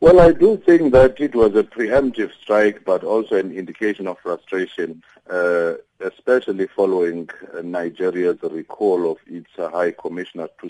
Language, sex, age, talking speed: English, male, 50-69, 150 wpm